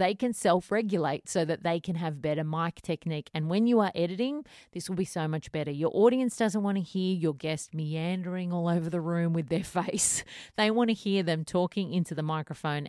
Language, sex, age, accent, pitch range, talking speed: English, female, 30-49, Australian, 160-205 Hz, 220 wpm